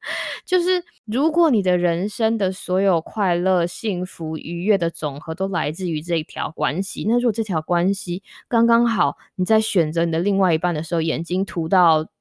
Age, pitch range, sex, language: 20-39, 165-205 Hz, female, Chinese